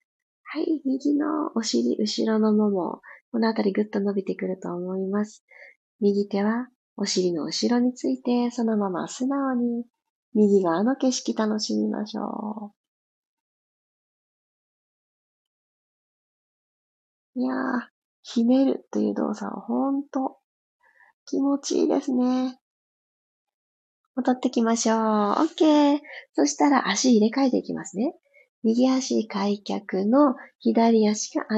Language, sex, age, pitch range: Japanese, female, 30-49, 215-280 Hz